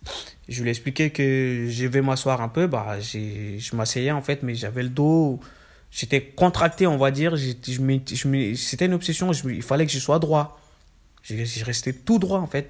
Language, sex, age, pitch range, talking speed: French, male, 20-39, 115-145 Hz, 220 wpm